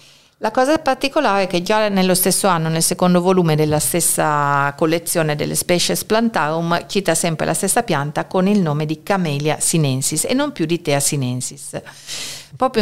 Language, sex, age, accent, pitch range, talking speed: Italian, female, 50-69, native, 145-175 Hz, 170 wpm